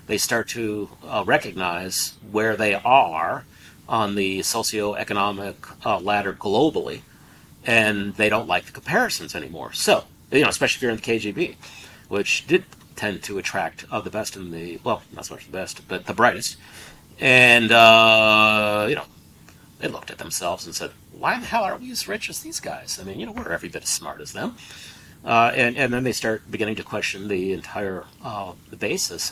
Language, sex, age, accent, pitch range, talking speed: English, male, 50-69, American, 95-110 Hz, 190 wpm